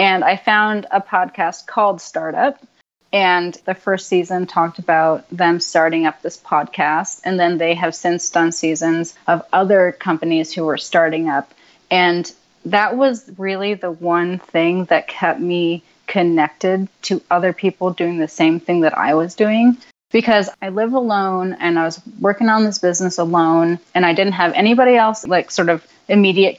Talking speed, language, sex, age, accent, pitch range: 170 wpm, English, female, 30-49, American, 170-200 Hz